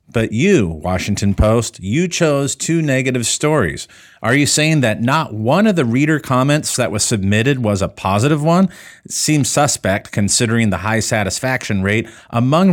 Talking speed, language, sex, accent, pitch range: 165 wpm, English, male, American, 100-135 Hz